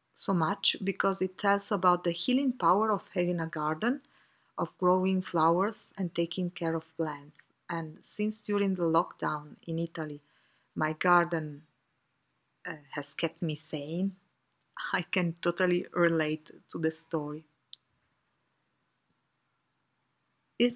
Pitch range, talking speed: 160-200 Hz, 125 wpm